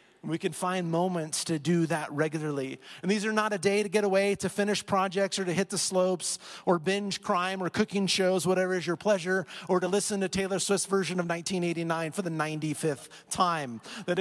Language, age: English, 30-49